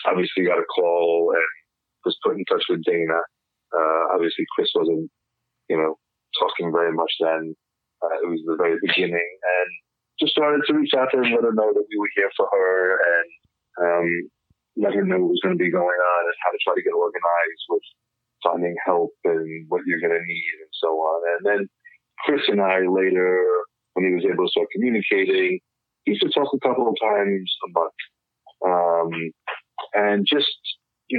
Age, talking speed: 30-49, 195 wpm